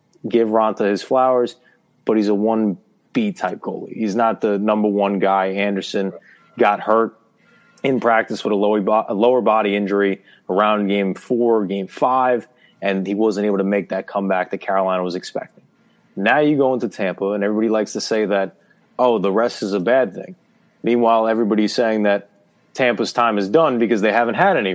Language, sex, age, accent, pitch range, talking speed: English, male, 30-49, American, 100-120 Hz, 180 wpm